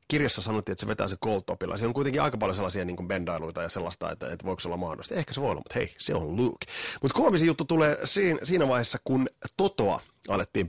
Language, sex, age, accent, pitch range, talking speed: Finnish, male, 30-49, native, 95-145 Hz, 240 wpm